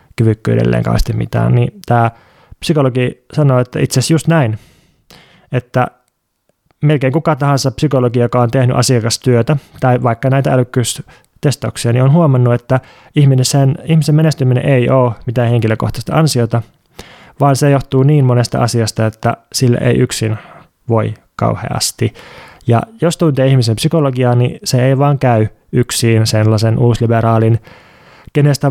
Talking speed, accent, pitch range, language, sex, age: 130 wpm, native, 120-140 Hz, Finnish, male, 20-39